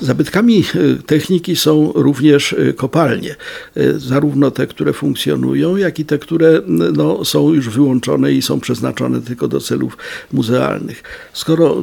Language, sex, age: Polish, male, 50-69